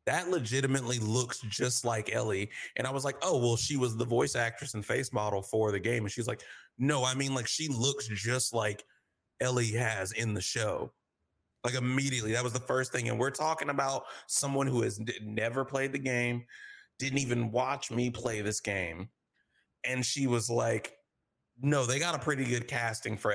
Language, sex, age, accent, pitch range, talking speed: English, male, 30-49, American, 110-135 Hz, 200 wpm